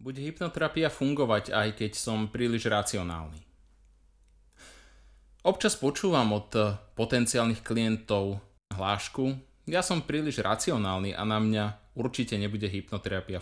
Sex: male